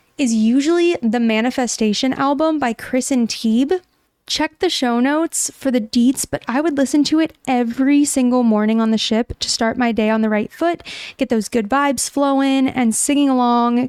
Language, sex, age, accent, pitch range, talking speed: English, female, 20-39, American, 230-285 Hz, 190 wpm